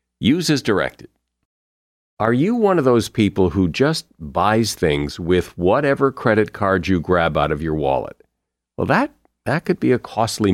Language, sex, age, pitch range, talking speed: English, male, 50-69, 95-140 Hz, 170 wpm